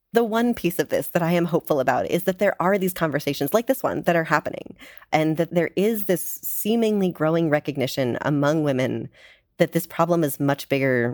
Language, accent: English, American